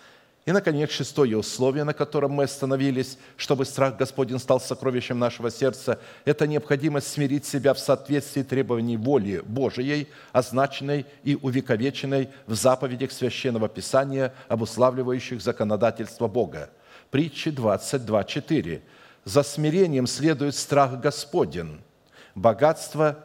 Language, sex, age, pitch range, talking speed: Russian, male, 50-69, 125-145 Hz, 110 wpm